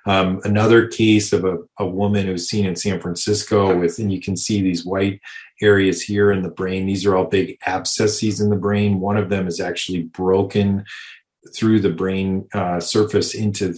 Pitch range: 95-105 Hz